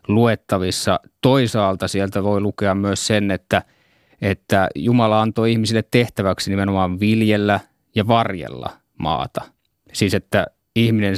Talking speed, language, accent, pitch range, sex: 115 wpm, Finnish, native, 95-110 Hz, male